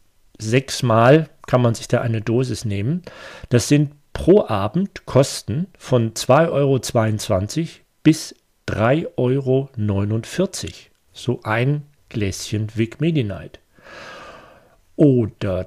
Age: 40-59